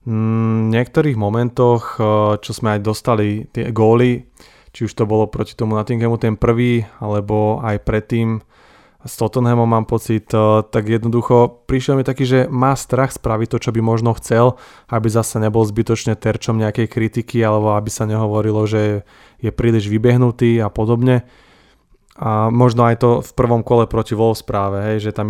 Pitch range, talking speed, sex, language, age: 110-120 Hz, 165 wpm, male, Slovak, 20-39